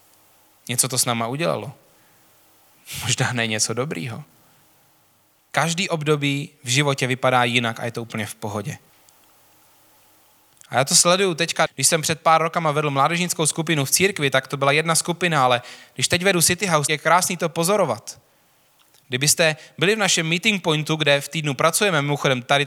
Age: 20-39